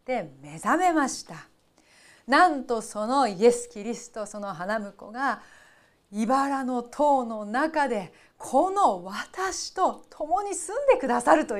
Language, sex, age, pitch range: Japanese, female, 40-59, 200-315 Hz